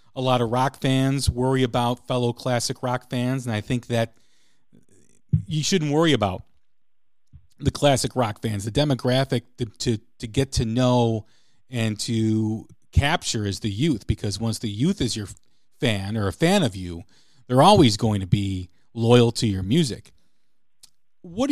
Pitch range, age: 110-135 Hz, 40-59